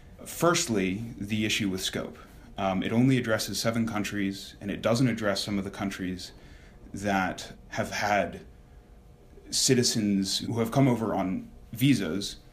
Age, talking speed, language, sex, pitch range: 30-49, 140 wpm, English, male, 95-120 Hz